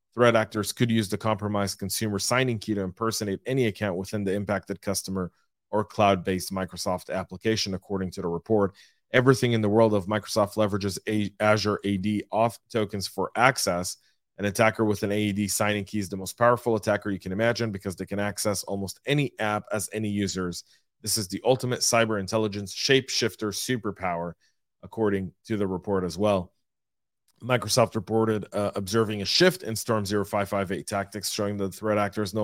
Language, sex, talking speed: English, male, 170 wpm